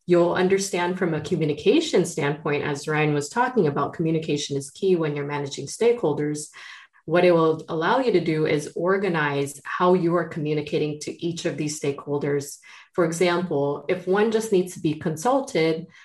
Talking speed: 170 wpm